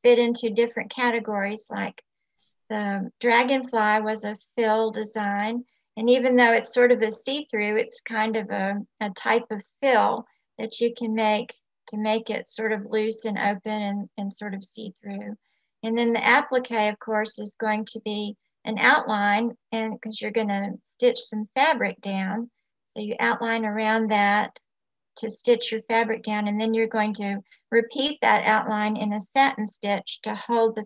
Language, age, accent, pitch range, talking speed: English, 50-69, American, 205-230 Hz, 175 wpm